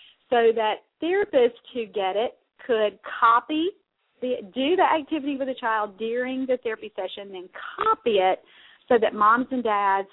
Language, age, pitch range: English, 40-59, 205-260 Hz